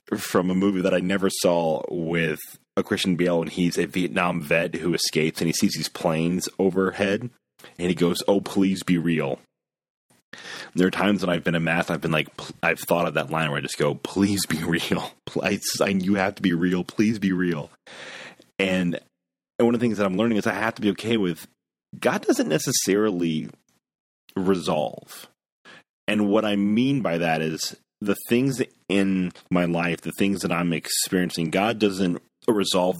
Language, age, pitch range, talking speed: English, 30-49, 80-95 Hz, 190 wpm